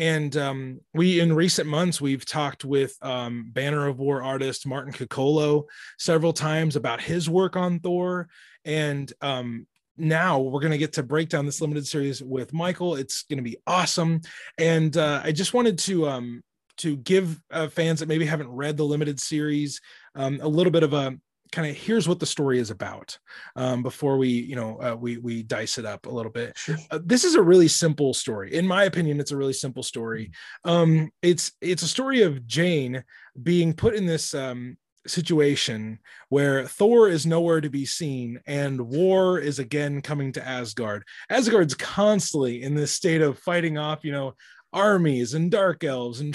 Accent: American